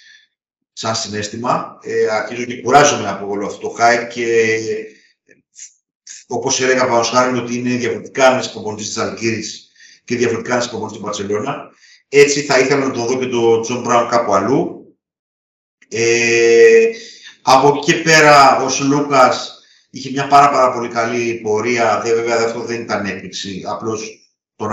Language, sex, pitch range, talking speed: Greek, male, 110-140 Hz, 150 wpm